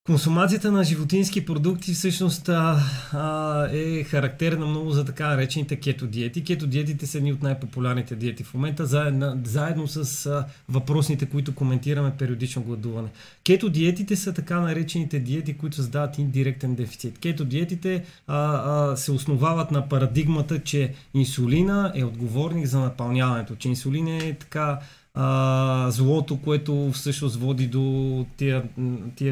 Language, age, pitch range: Bulgarian, 30-49, 130-155 Hz